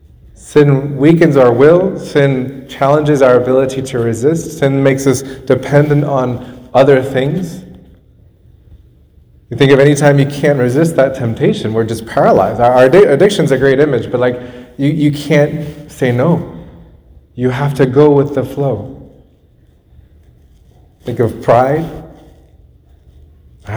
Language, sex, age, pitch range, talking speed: English, male, 30-49, 120-160 Hz, 135 wpm